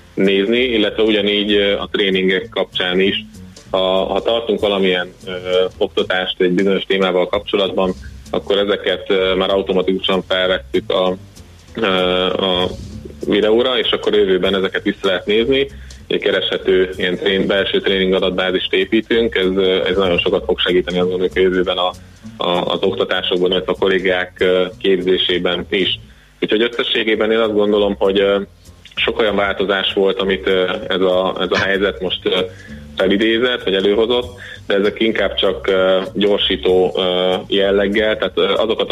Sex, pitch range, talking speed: male, 90-105 Hz, 135 wpm